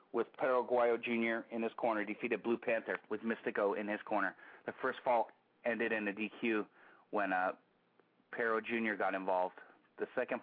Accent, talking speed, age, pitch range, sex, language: American, 165 wpm, 30-49, 105-115 Hz, male, English